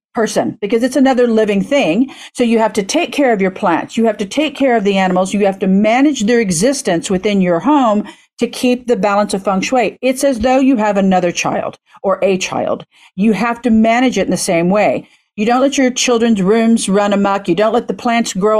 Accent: American